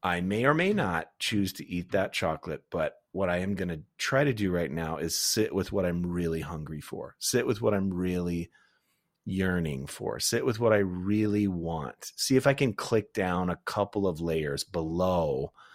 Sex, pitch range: male, 85-120 Hz